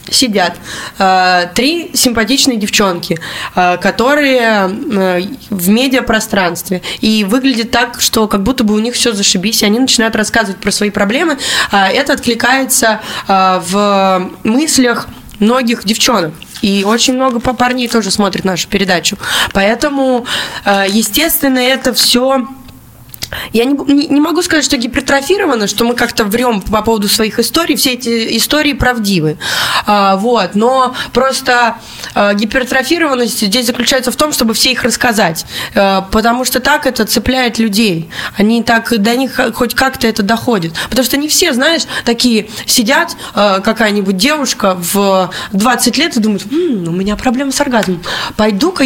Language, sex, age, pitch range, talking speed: Russian, female, 20-39, 200-260 Hz, 140 wpm